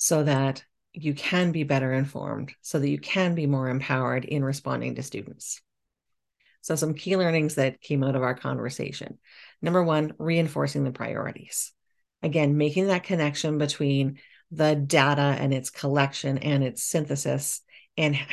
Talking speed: 155 wpm